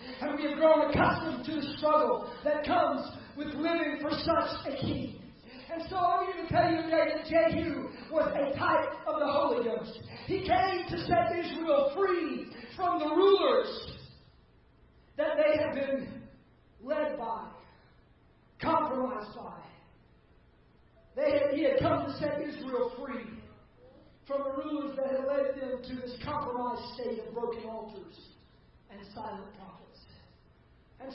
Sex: male